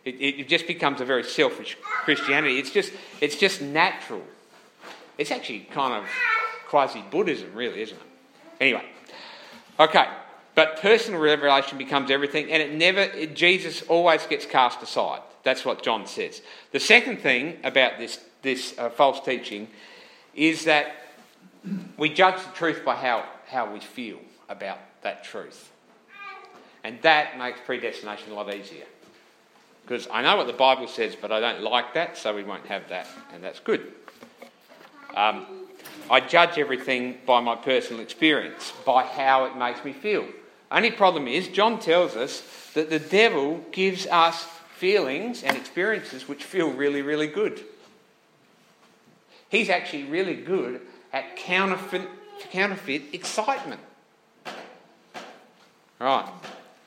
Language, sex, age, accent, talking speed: English, male, 50-69, Australian, 140 wpm